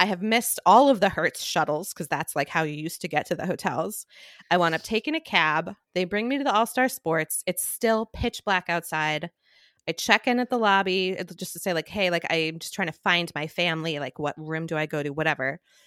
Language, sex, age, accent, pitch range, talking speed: English, female, 20-39, American, 165-220 Hz, 240 wpm